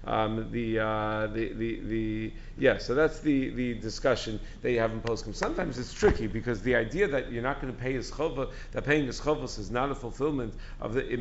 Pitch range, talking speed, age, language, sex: 120-150 Hz, 220 wpm, 40-59, English, male